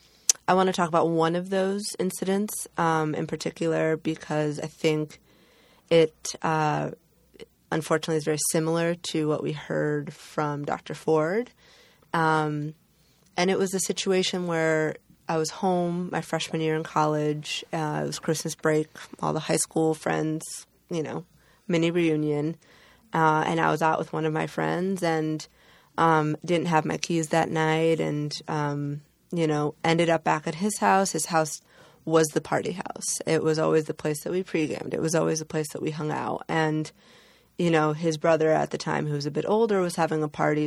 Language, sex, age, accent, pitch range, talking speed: English, female, 20-39, American, 155-170 Hz, 185 wpm